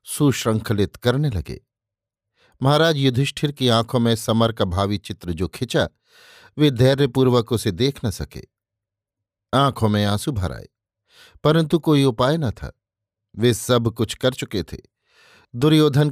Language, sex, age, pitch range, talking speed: Hindi, male, 50-69, 110-135 Hz, 135 wpm